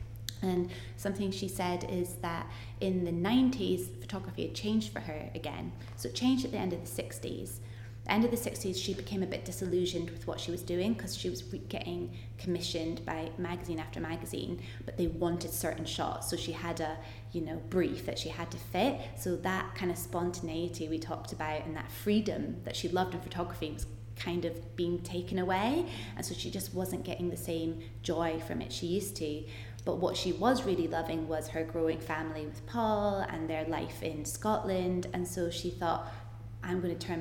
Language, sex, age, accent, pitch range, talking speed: English, female, 20-39, British, 110-175 Hz, 200 wpm